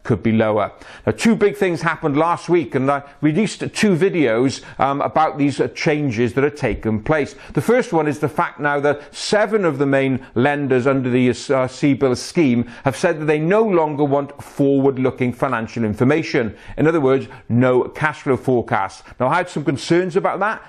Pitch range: 130-165 Hz